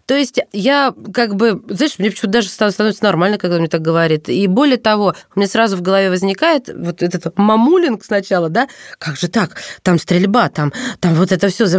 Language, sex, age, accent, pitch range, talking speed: Russian, female, 20-39, native, 170-215 Hz, 205 wpm